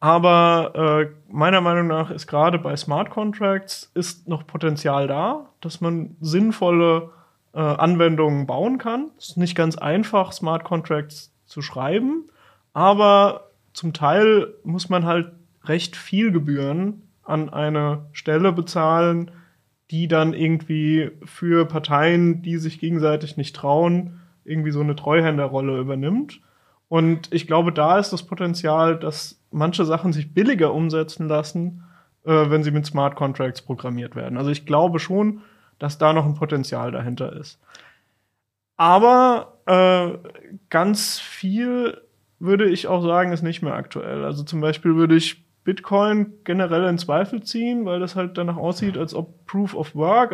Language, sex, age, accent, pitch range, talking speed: German, male, 30-49, German, 155-190 Hz, 145 wpm